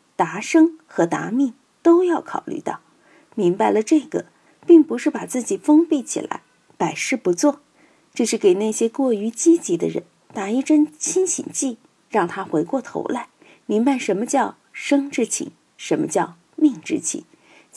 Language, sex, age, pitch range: Chinese, female, 50-69, 210-310 Hz